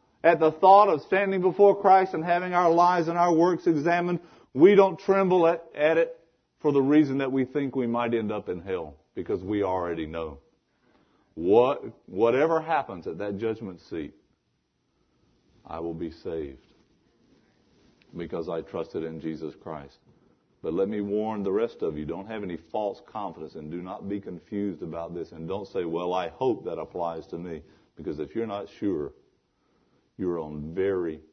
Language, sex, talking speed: English, male, 175 wpm